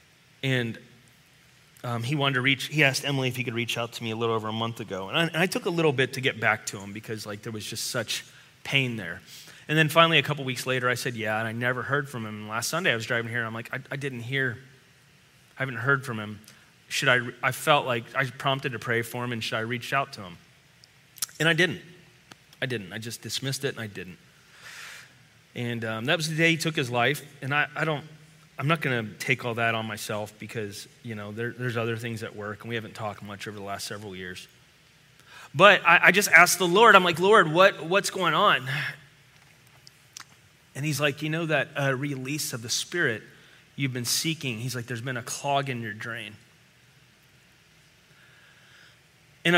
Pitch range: 115-150 Hz